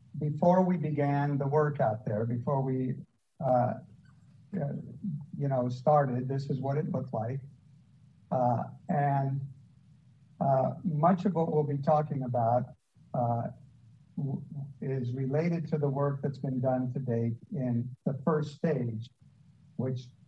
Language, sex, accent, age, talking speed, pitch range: English, male, American, 50-69, 135 wpm, 130-155 Hz